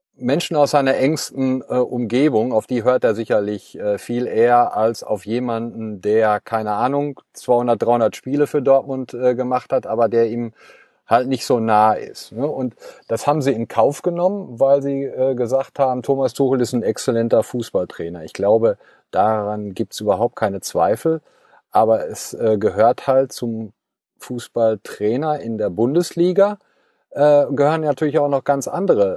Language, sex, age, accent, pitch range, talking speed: German, male, 40-59, German, 100-135 Hz, 150 wpm